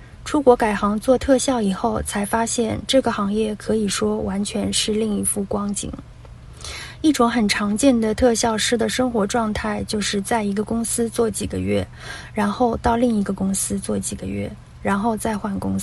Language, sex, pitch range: Chinese, female, 195-235 Hz